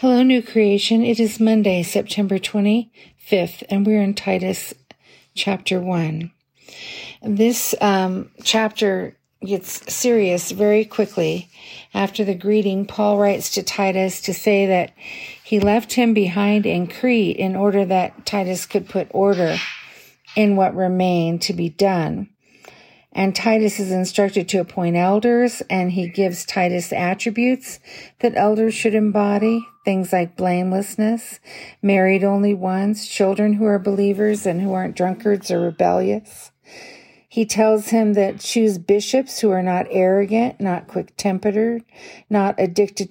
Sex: female